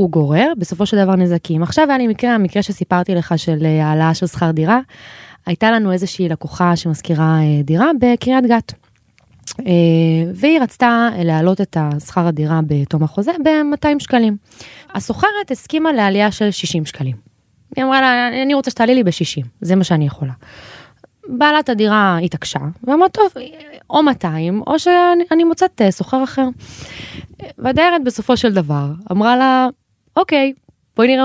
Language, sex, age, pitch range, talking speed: Hebrew, female, 20-39, 170-255 Hz, 150 wpm